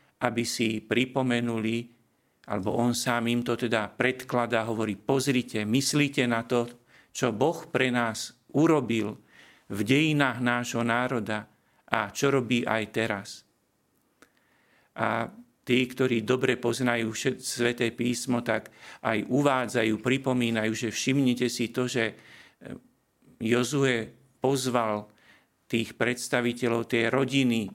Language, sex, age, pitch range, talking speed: Slovak, male, 50-69, 115-130 Hz, 110 wpm